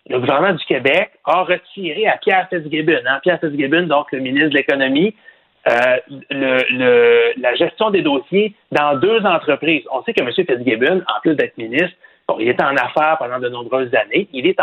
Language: French